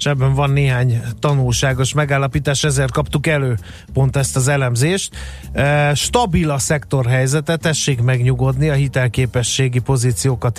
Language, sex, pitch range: Hungarian, male, 125-150 Hz